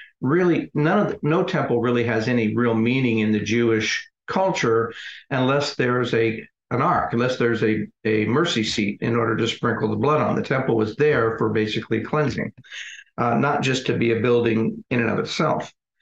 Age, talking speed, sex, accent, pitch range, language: 50-69, 185 wpm, male, American, 115-135 Hz, English